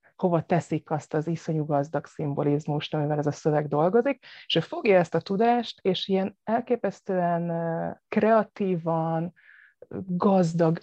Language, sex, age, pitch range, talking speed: Hungarian, female, 30-49, 155-195 Hz, 130 wpm